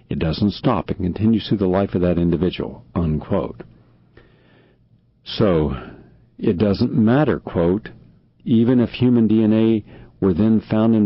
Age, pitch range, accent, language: 60-79, 85-115 Hz, American, English